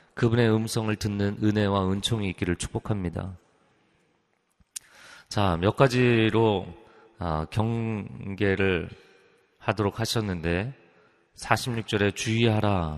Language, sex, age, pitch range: Korean, male, 30-49, 95-115 Hz